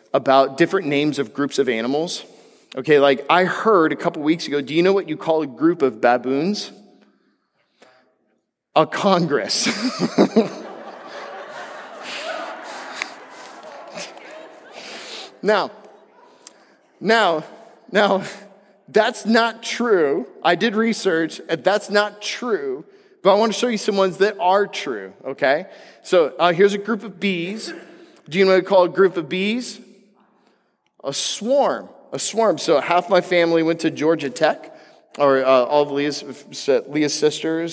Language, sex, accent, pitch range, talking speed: English, male, American, 155-210 Hz, 140 wpm